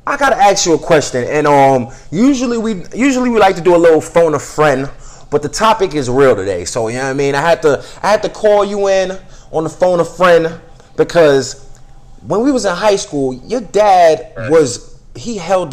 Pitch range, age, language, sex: 145-200 Hz, 30-49, English, male